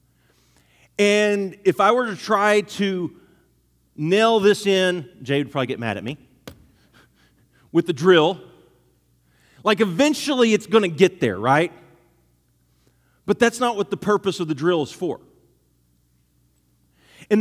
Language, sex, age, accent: English, male, 40-59, American